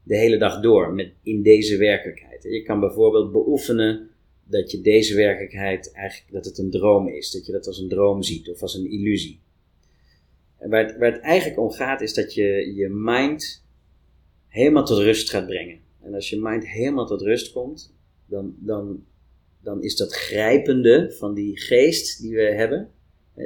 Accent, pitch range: Dutch, 90-115 Hz